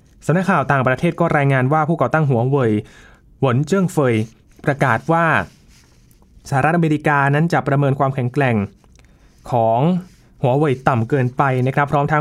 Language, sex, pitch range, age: Thai, male, 120-155 Hz, 20-39